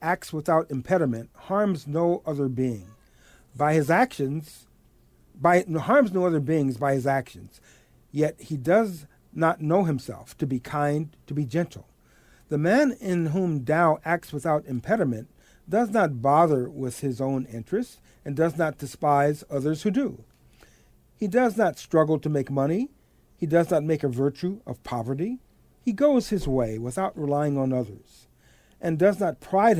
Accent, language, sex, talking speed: American, English, male, 160 wpm